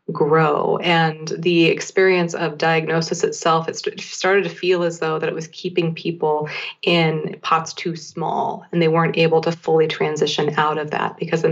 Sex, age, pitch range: female, 30-49, 160-185 Hz